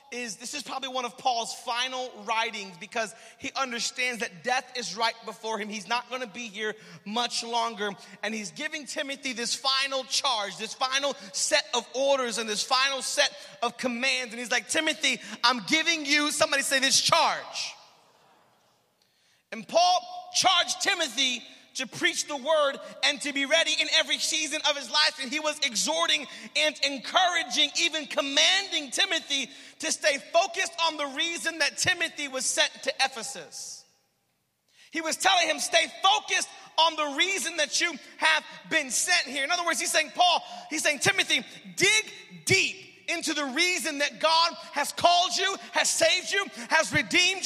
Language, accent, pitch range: English, American, 250-330 Hz